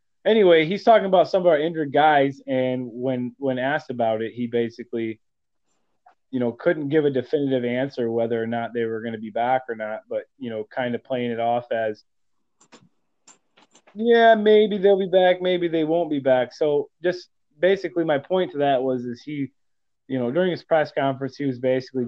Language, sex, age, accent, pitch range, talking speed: English, male, 20-39, American, 125-175 Hz, 200 wpm